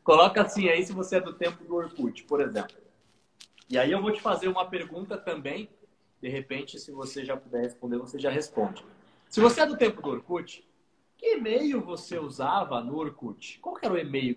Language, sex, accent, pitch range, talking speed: Portuguese, male, Brazilian, 160-240 Hz, 205 wpm